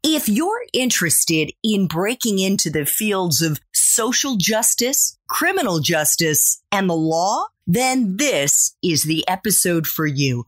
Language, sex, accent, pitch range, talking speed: English, female, American, 170-275 Hz, 130 wpm